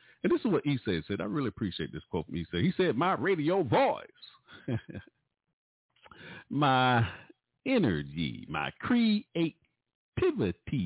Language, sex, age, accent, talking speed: English, male, 50-69, American, 135 wpm